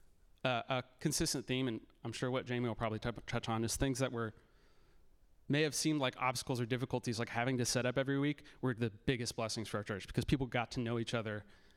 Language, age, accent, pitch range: English, 30-49, American, 110-130 Hz